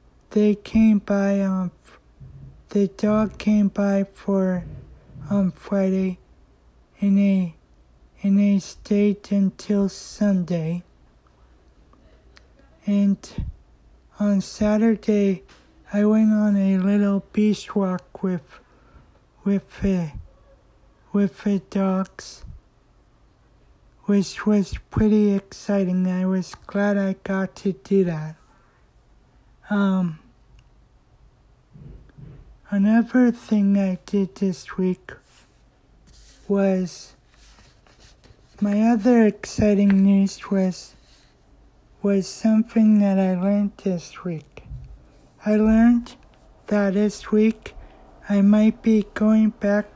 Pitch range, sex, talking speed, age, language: 185-205 Hz, male, 90 wpm, 60-79, English